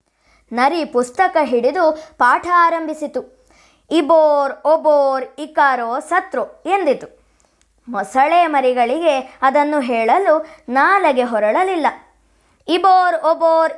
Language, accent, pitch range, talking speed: Kannada, native, 265-335 Hz, 80 wpm